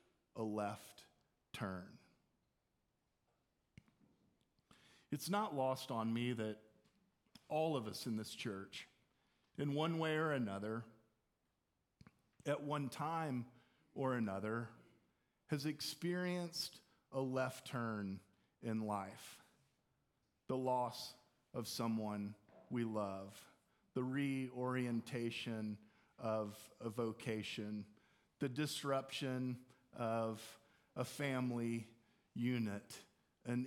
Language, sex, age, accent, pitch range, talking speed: English, male, 40-59, American, 110-135 Hz, 90 wpm